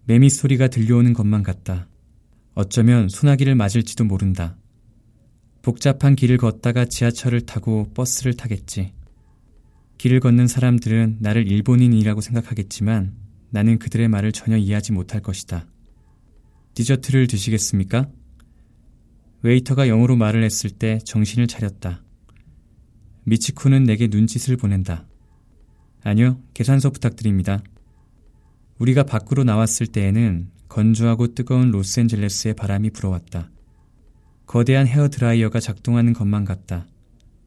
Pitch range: 105-120 Hz